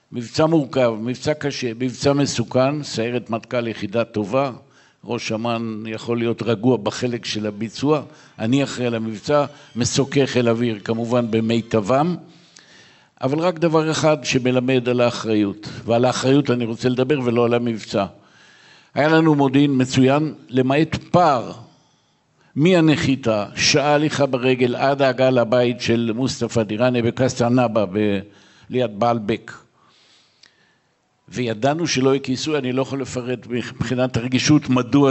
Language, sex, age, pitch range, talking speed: Hebrew, male, 60-79, 115-140 Hz, 125 wpm